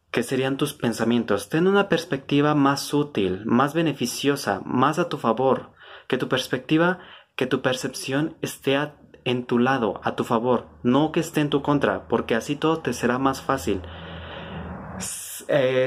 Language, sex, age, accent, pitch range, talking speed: Spanish, male, 30-49, Mexican, 115-145 Hz, 160 wpm